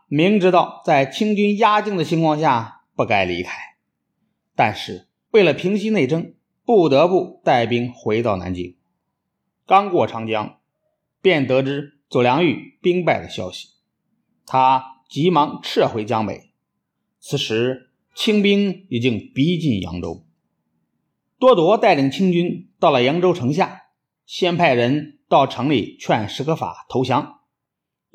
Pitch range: 120-185 Hz